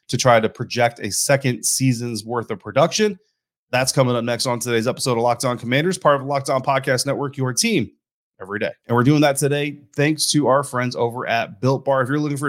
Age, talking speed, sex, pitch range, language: 30-49, 220 wpm, male, 120-140 Hz, English